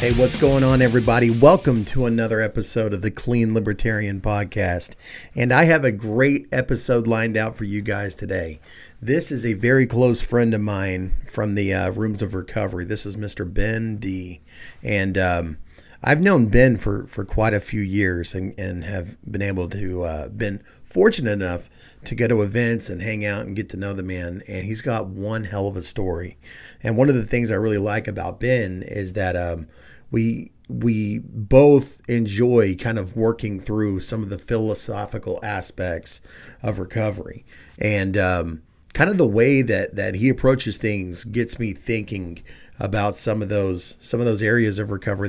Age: 40-59